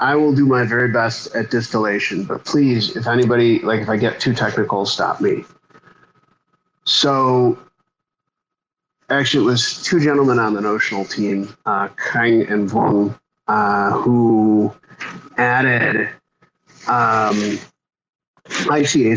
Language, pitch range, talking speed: English, 110-145 Hz, 120 wpm